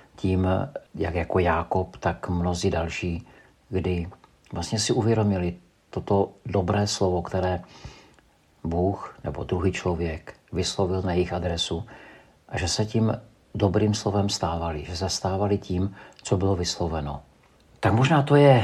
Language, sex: Czech, male